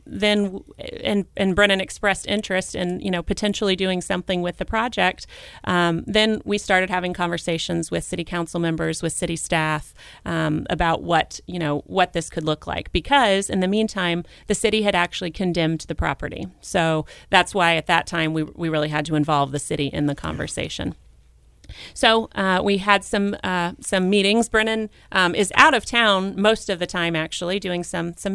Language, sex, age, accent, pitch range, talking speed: English, female, 30-49, American, 170-205 Hz, 185 wpm